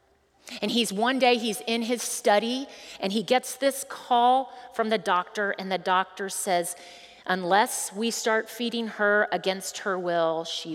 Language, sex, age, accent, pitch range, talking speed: English, female, 30-49, American, 175-225 Hz, 160 wpm